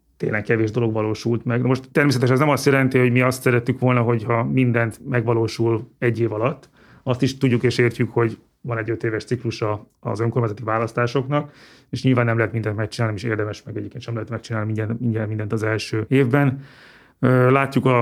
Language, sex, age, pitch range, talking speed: Hungarian, male, 30-49, 115-130 Hz, 190 wpm